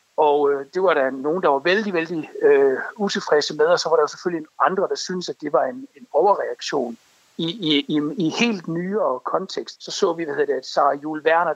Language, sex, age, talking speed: Danish, male, 60-79, 220 wpm